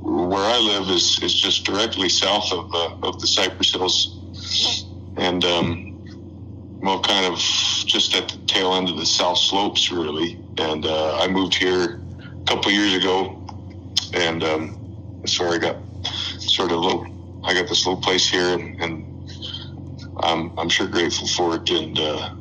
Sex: male